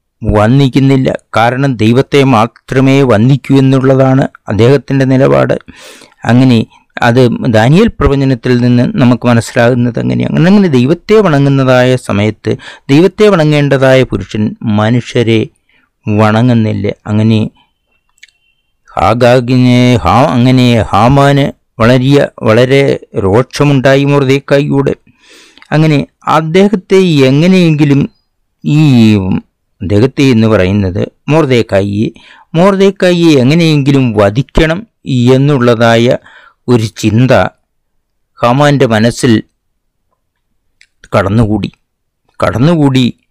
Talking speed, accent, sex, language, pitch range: 70 wpm, native, male, Malayalam, 115-140 Hz